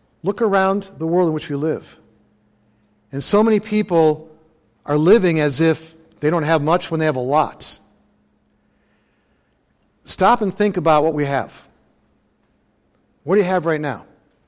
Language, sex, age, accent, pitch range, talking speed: English, male, 50-69, American, 145-195 Hz, 160 wpm